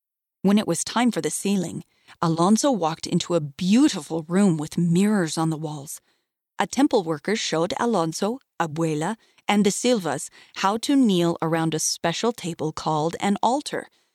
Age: 40-59